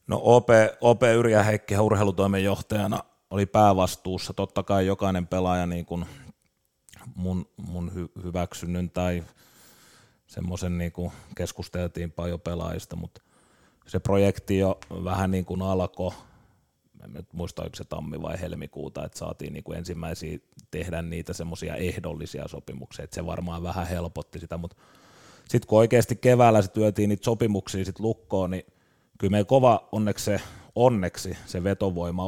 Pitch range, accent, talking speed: 85-100 Hz, native, 130 wpm